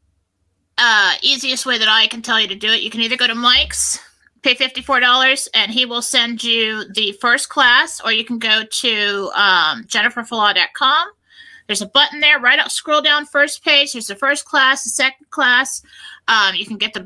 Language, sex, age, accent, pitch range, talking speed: English, female, 30-49, American, 195-265 Hz, 195 wpm